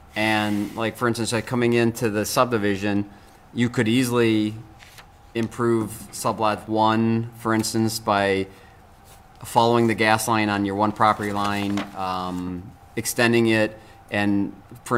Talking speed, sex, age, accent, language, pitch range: 130 wpm, male, 30-49, American, English, 100-115 Hz